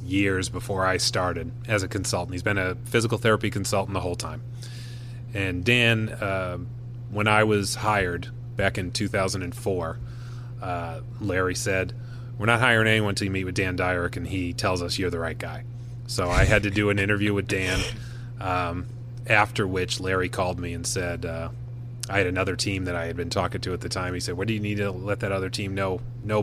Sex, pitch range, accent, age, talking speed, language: male, 100-120 Hz, American, 30-49, 205 wpm, English